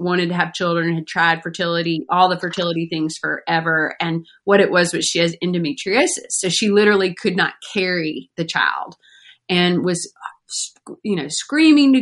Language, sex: English, female